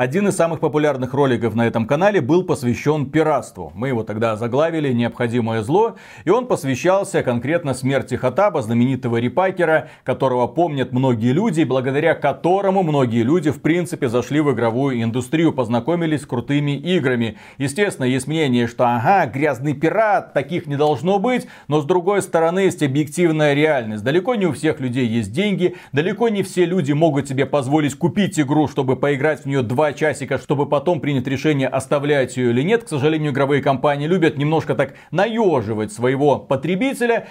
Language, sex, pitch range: Russian, male, 130-180 Hz